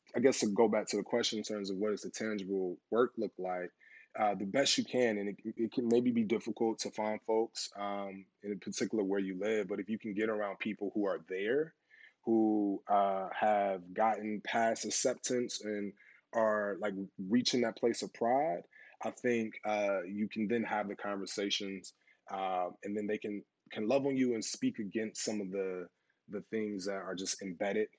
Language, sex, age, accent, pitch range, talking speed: English, male, 20-39, American, 95-110 Hz, 195 wpm